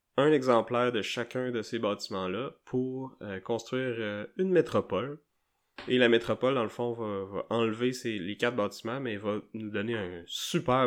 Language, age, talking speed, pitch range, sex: French, 20-39, 180 wpm, 100-120 Hz, male